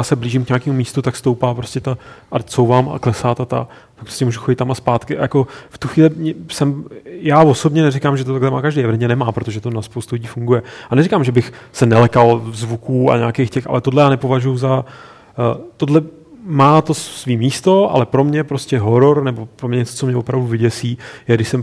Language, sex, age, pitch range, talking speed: Czech, male, 30-49, 120-135 Hz, 215 wpm